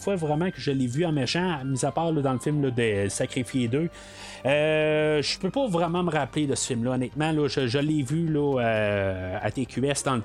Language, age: French, 30-49